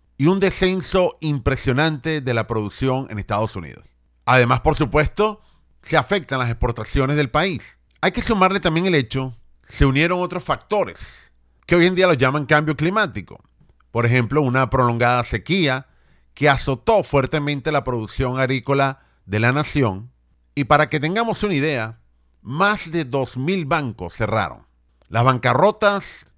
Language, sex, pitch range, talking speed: Spanish, male, 115-165 Hz, 145 wpm